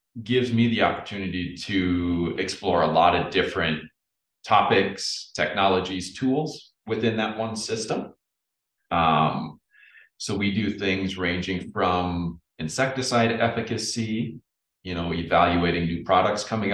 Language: English